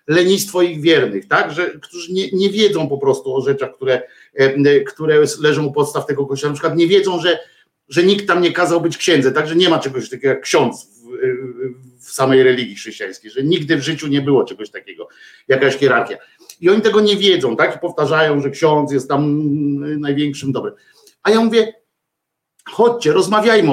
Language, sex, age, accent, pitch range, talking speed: Polish, male, 50-69, native, 150-225 Hz, 185 wpm